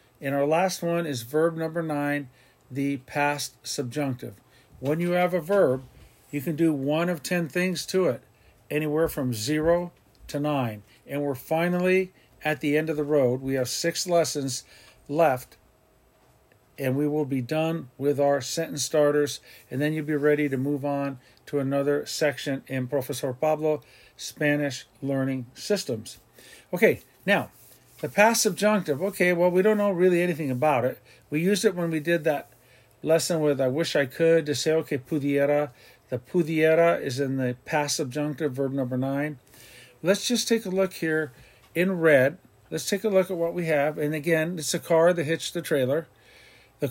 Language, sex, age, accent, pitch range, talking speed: English, male, 50-69, American, 135-165 Hz, 175 wpm